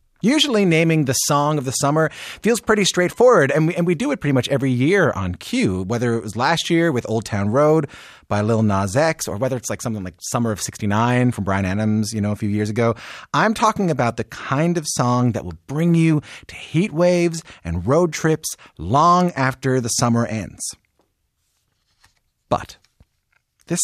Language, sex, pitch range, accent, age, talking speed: English, male, 105-160 Hz, American, 30-49, 195 wpm